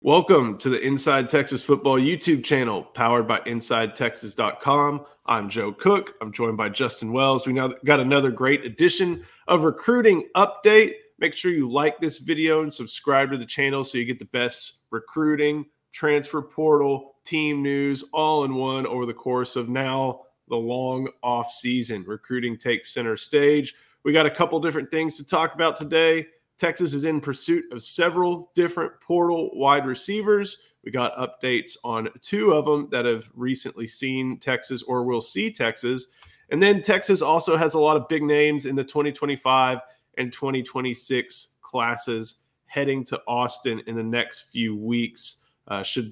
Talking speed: 165 wpm